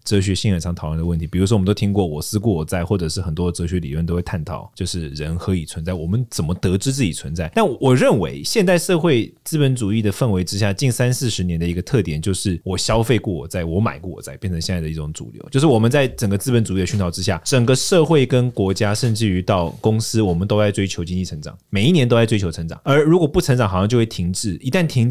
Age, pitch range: 20-39, 90-125 Hz